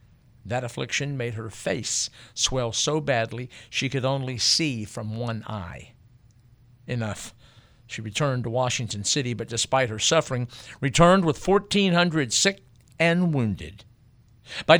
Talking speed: 130 wpm